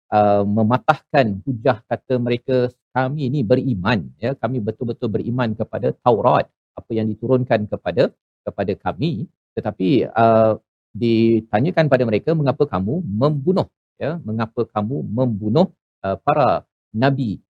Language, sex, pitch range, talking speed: Malayalam, male, 105-130 Hz, 120 wpm